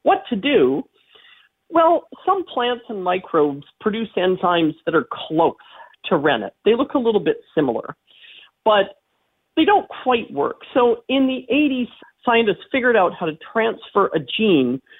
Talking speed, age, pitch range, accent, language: 150 wpm, 40-59, 170-260 Hz, American, English